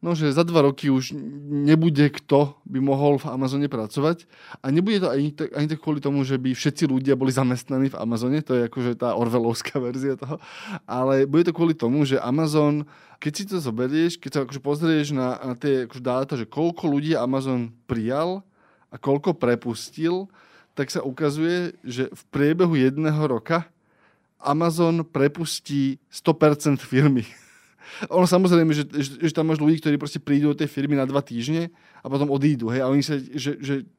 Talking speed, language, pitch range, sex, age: 180 wpm, Slovak, 130-155 Hz, male, 20-39